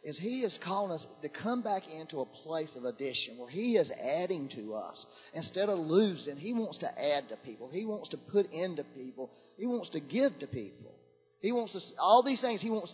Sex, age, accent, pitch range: male, 40-59, American, 160-235 Hz